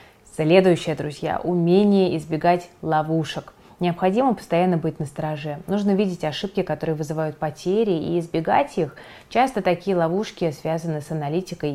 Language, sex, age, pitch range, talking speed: Russian, female, 20-39, 160-200 Hz, 130 wpm